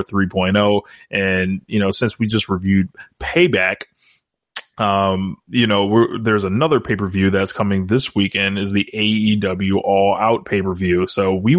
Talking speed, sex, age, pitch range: 145 wpm, male, 20-39, 95-115 Hz